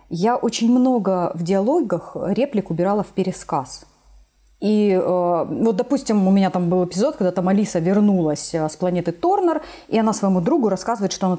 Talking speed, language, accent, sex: 165 wpm, Russian, native, female